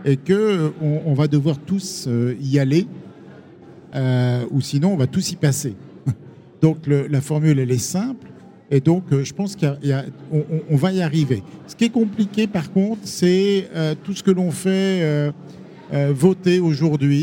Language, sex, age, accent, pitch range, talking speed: French, male, 50-69, French, 140-185 Hz, 185 wpm